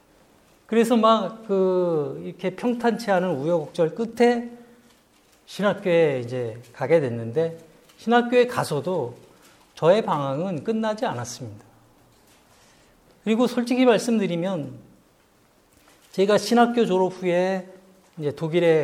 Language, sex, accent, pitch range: Korean, male, native, 145-220 Hz